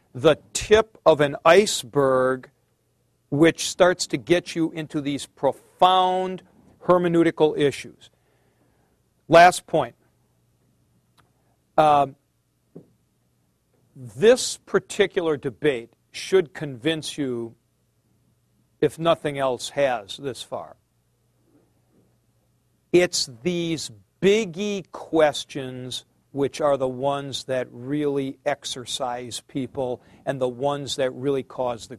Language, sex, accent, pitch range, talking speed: English, male, American, 125-165 Hz, 90 wpm